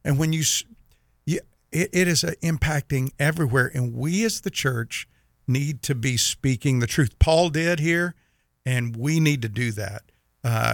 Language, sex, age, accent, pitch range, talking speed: English, male, 50-69, American, 115-160 Hz, 160 wpm